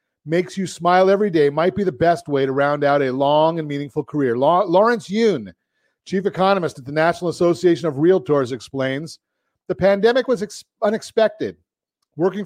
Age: 40-59